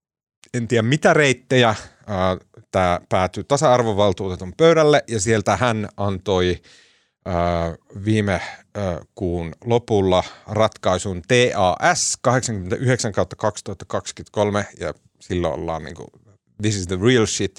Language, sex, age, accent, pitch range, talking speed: Finnish, male, 30-49, native, 95-125 Hz, 90 wpm